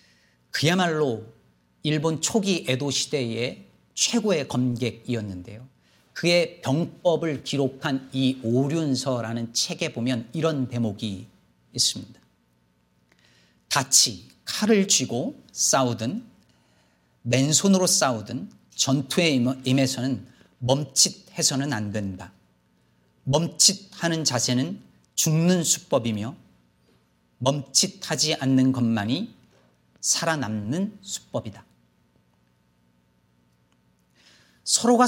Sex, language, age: male, Korean, 40-59